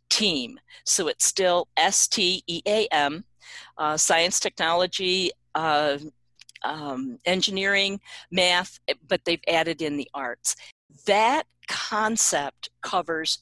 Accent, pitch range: American, 155-205 Hz